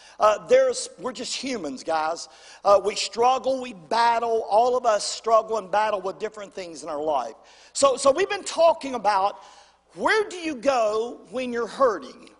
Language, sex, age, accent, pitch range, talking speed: English, male, 50-69, American, 205-275 Hz, 175 wpm